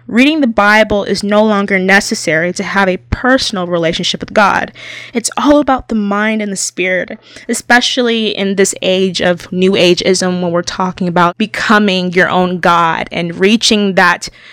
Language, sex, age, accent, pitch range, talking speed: English, female, 20-39, American, 180-220 Hz, 165 wpm